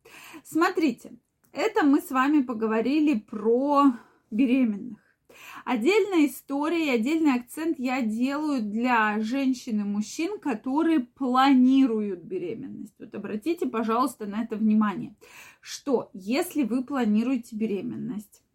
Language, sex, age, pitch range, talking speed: Russian, female, 20-39, 220-265 Hz, 105 wpm